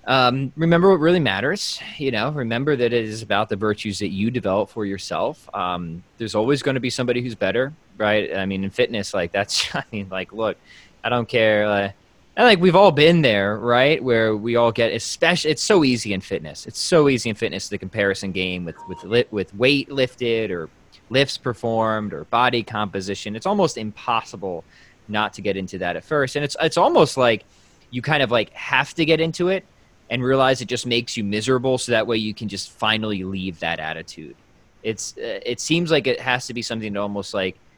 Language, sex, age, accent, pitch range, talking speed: English, male, 20-39, American, 100-135 Hz, 210 wpm